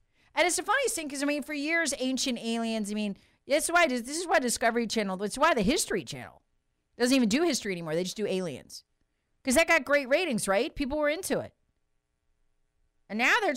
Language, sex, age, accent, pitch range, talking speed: English, female, 40-59, American, 195-290 Hz, 215 wpm